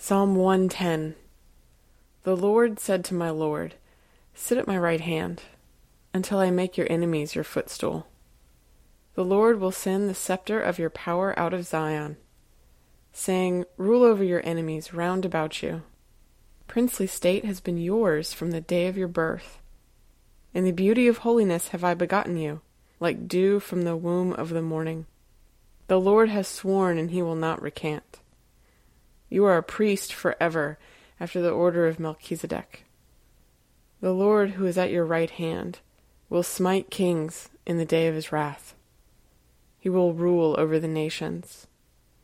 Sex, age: female, 20-39